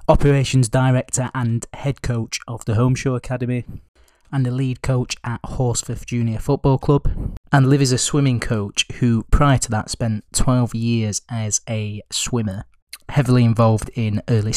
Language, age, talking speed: English, 20-39, 155 wpm